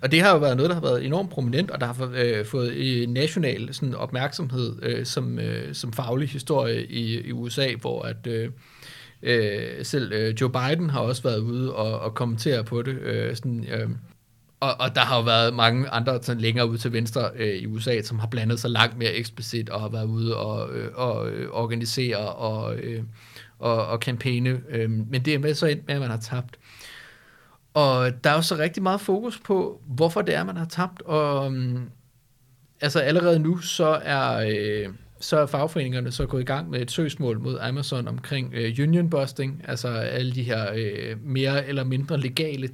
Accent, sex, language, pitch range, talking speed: native, male, Danish, 115-140 Hz, 190 wpm